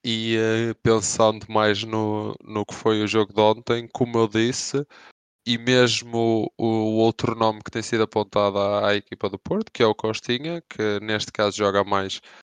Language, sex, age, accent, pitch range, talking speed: English, male, 20-39, Brazilian, 105-120 Hz, 185 wpm